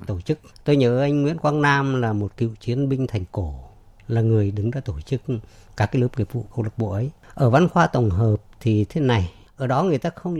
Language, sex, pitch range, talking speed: Vietnamese, female, 105-140 Hz, 250 wpm